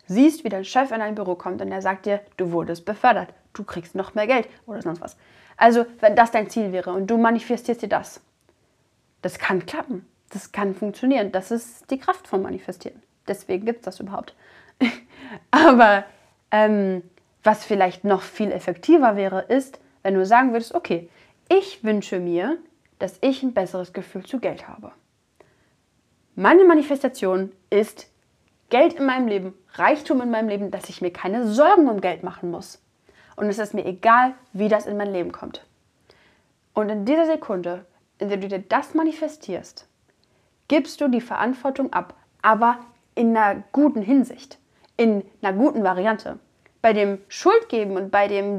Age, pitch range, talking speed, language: 30-49, 190-250 Hz, 170 wpm, German